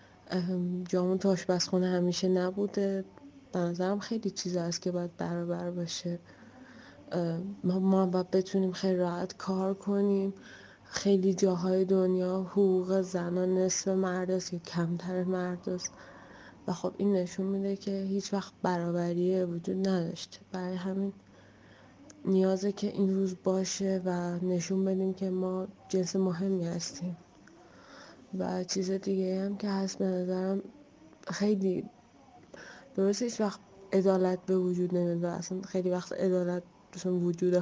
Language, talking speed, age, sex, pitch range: Persian, 125 wpm, 20-39, female, 180-195 Hz